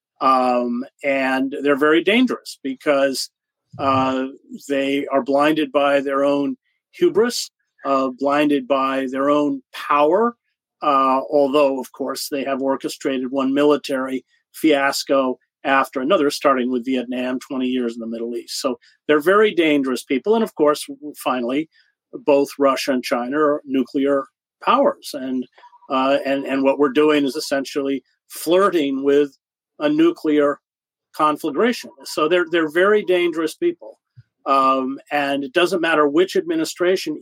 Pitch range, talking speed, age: 135-170 Hz, 135 wpm, 40-59